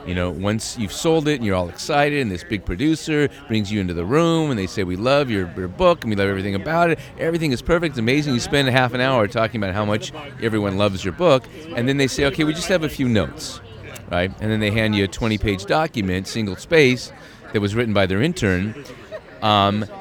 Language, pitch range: English, 100-140 Hz